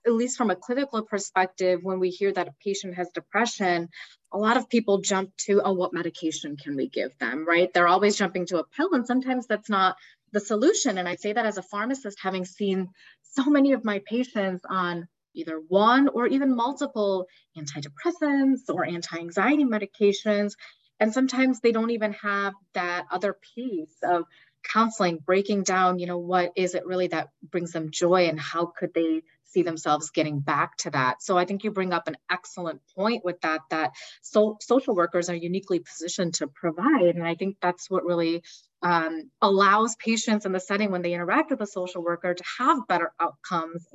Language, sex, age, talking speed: English, female, 30-49, 190 wpm